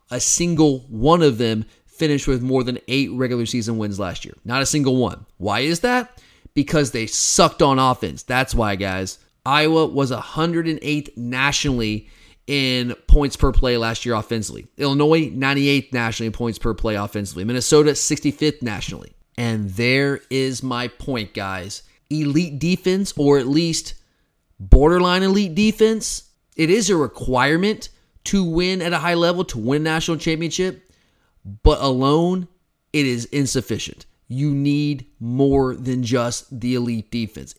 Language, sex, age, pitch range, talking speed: English, male, 30-49, 120-150 Hz, 150 wpm